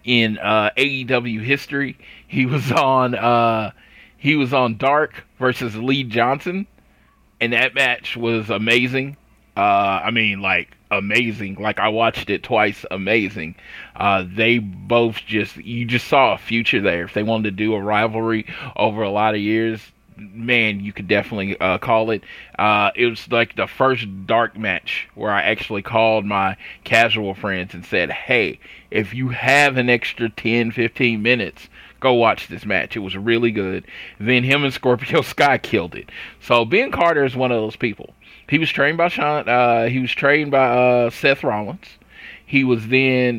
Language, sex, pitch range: English, male, 110-130 Hz